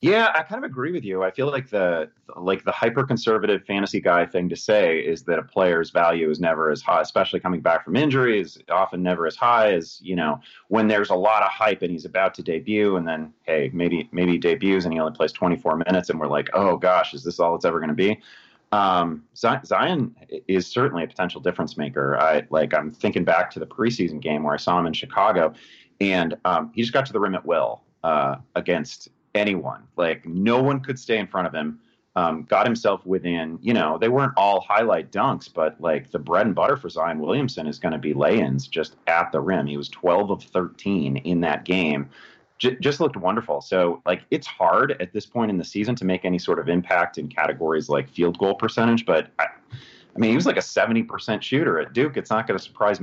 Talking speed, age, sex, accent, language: 225 wpm, 30-49, male, American, English